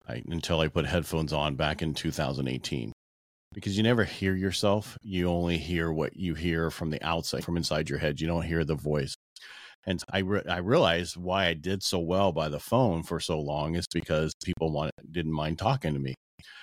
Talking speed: 205 wpm